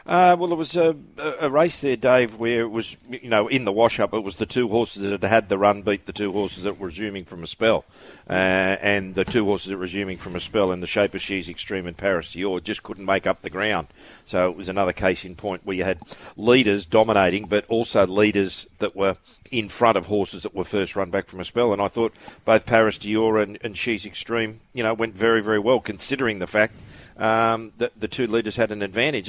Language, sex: English, male